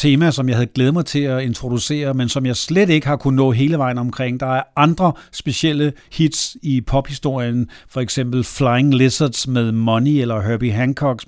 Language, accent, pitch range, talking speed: Danish, native, 120-155 Hz, 190 wpm